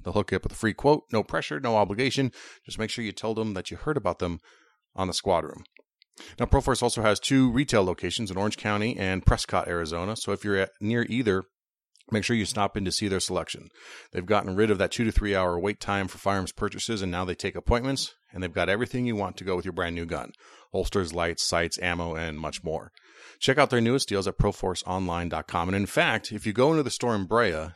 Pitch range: 90-110 Hz